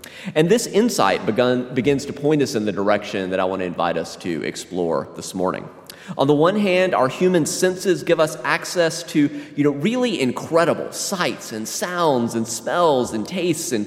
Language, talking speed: English, 175 wpm